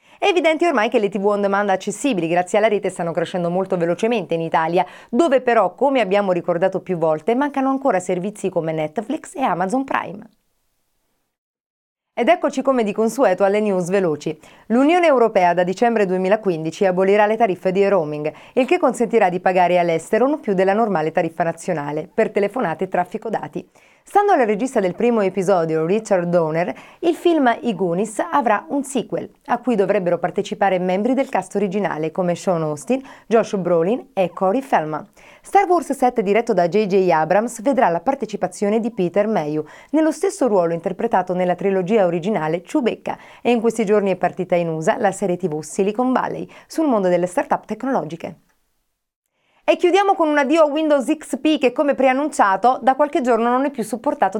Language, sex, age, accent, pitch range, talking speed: Italian, female, 30-49, native, 180-265 Hz, 170 wpm